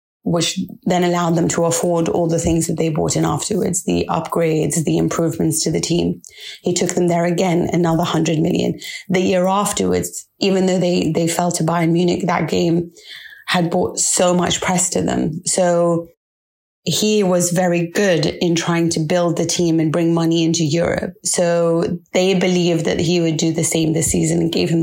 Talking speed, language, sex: 190 wpm, English, female